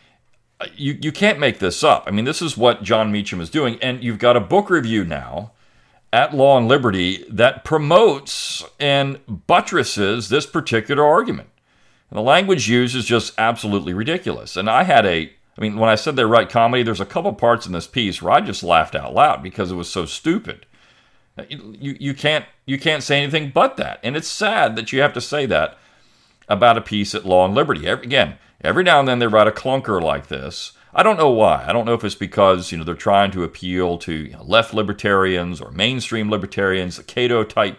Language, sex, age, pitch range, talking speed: English, male, 40-59, 95-125 Hz, 215 wpm